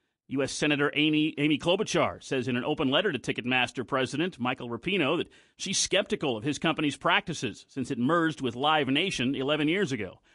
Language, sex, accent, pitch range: English, male, American, 135-170 Hz